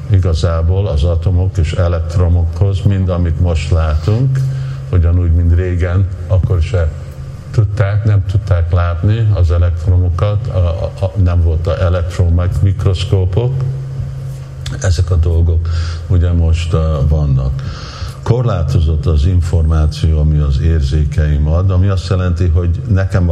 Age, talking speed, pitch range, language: 50-69, 115 wpm, 80-100 Hz, Hungarian